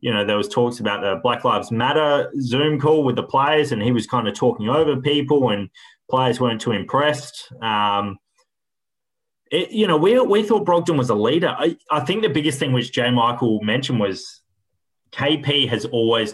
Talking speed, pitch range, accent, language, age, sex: 195 wpm, 105-130 Hz, Australian, English, 20-39, male